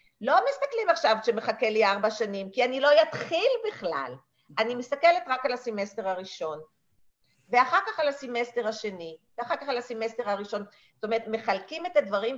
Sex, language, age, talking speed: female, Hebrew, 50-69, 160 wpm